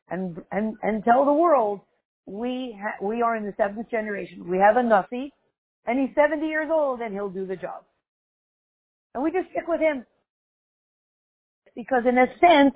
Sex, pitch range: female, 200-270 Hz